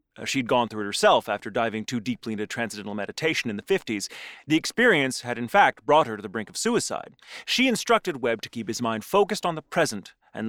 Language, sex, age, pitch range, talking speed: English, male, 30-49, 115-160 Hz, 225 wpm